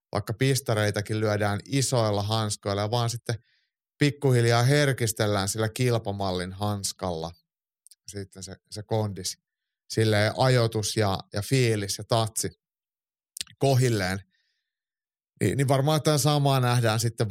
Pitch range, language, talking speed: 100-130 Hz, Finnish, 110 wpm